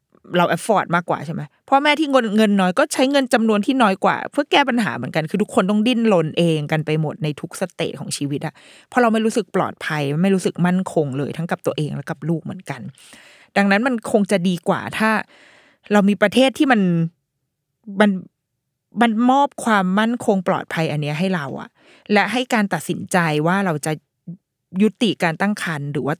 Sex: female